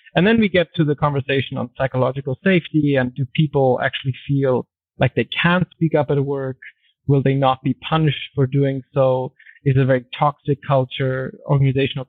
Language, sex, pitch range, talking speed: English, male, 130-150 Hz, 180 wpm